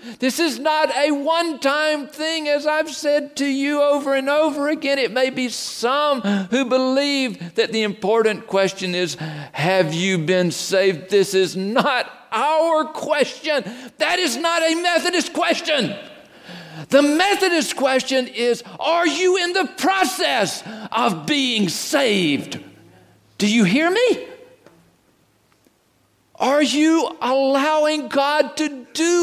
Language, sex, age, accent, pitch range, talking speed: English, male, 50-69, American, 225-315 Hz, 130 wpm